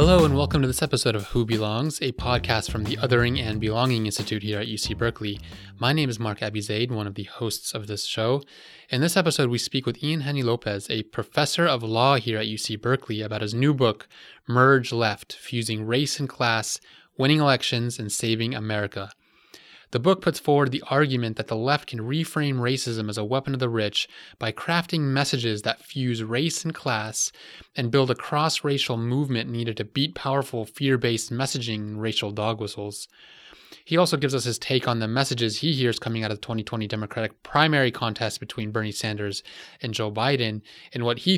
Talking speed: 195 wpm